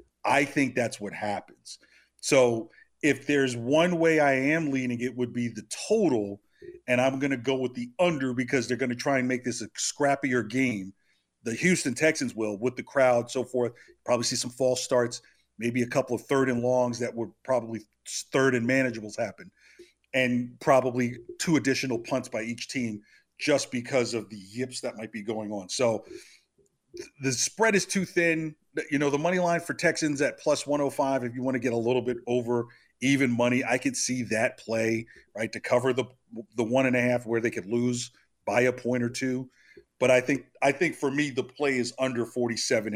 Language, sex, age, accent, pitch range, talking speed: English, male, 50-69, American, 120-135 Hz, 205 wpm